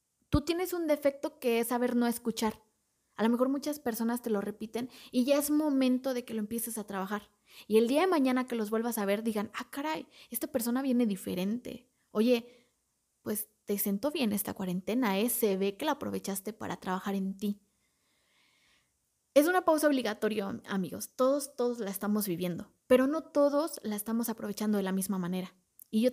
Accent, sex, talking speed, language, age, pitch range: Mexican, female, 190 wpm, Spanish, 20-39, 210-255 Hz